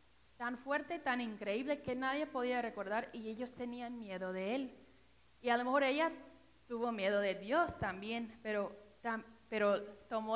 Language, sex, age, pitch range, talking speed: Spanish, female, 20-39, 200-250 Hz, 160 wpm